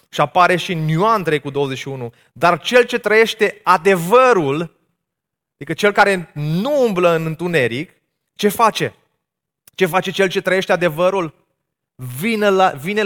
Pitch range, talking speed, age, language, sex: 125-175 Hz, 140 wpm, 30-49, Romanian, male